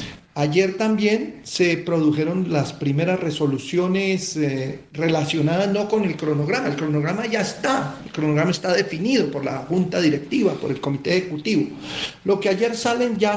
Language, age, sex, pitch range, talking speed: Spanish, 50-69, male, 145-190 Hz, 155 wpm